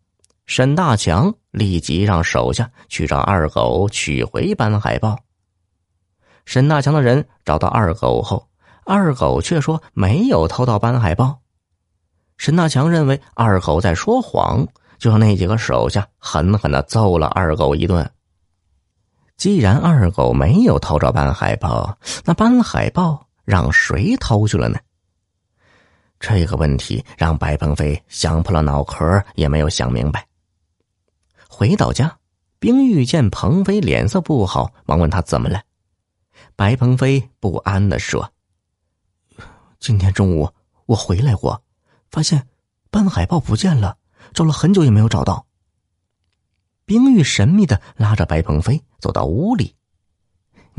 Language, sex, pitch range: Chinese, male, 85-130 Hz